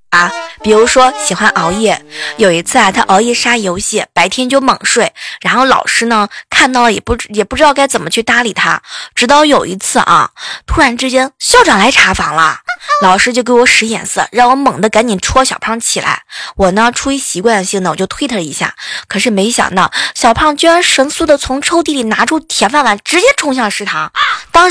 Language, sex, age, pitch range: Chinese, female, 20-39, 205-270 Hz